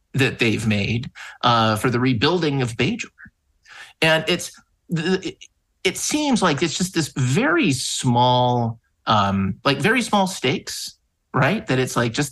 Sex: male